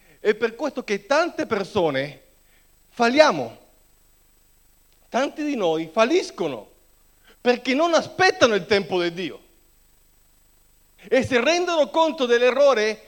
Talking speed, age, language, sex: 105 wpm, 40-59, Italian, male